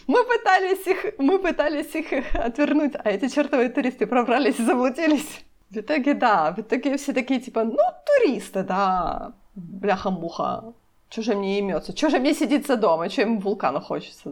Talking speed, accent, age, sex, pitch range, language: 165 wpm, native, 30-49, female, 195-265 Hz, Ukrainian